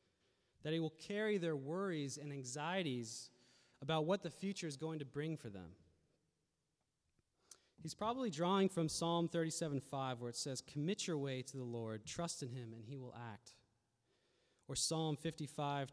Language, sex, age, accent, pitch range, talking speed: English, male, 20-39, American, 130-170 Hz, 165 wpm